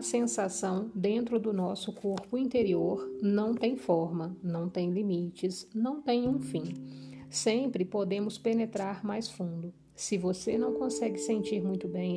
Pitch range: 165-215 Hz